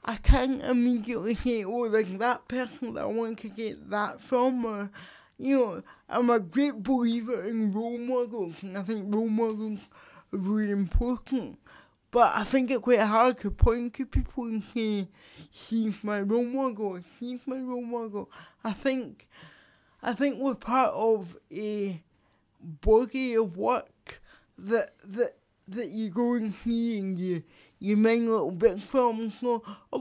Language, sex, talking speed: English, male, 160 wpm